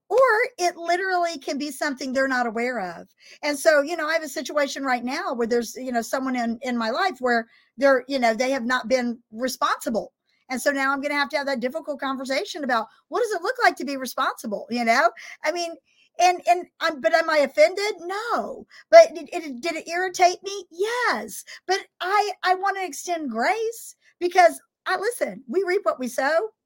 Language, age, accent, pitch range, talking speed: English, 50-69, American, 245-345 Hz, 205 wpm